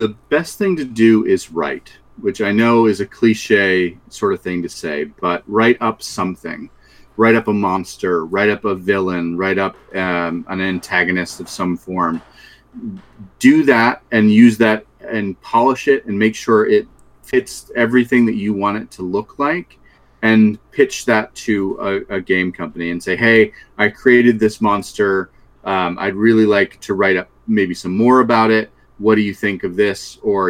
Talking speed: 185 wpm